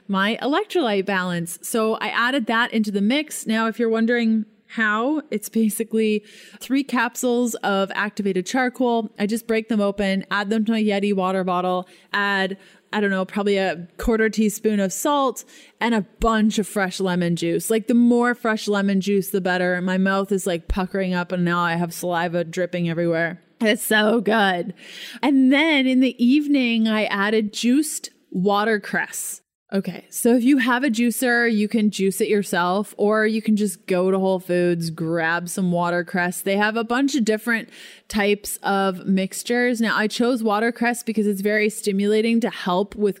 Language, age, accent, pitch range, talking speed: English, 20-39, American, 195-230 Hz, 180 wpm